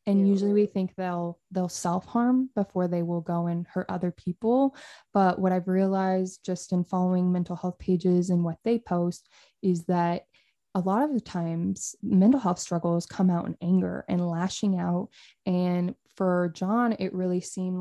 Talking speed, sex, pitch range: 175 wpm, female, 175-200 Hz